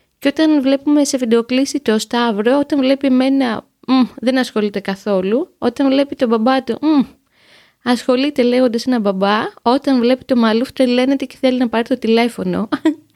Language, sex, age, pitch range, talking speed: Greek, female, 20-39, 215-275 Hz, 175 wpm